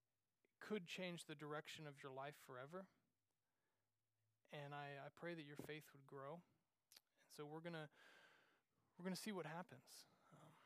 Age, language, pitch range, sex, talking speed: 30-49, English, 150-185 Hz, male, 150 wpm